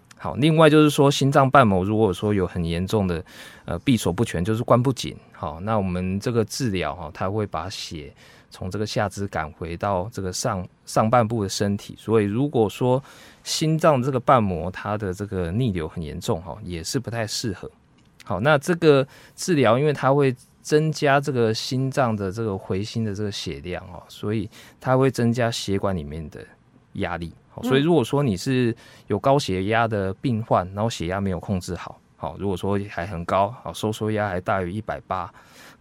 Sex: male